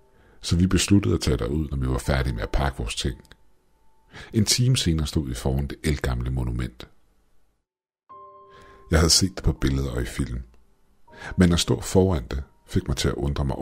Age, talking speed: 60-79, 195 wpm